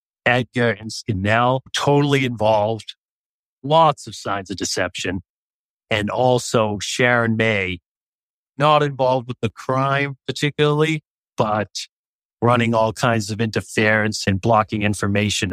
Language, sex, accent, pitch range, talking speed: English, male, American, 105-130 Hz, 110 wpm